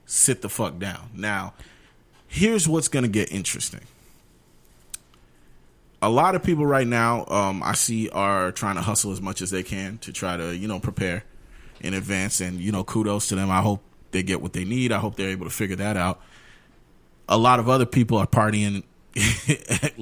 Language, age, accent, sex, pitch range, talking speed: English, 30-49, American, male, 90-110 Hz, 195 wpm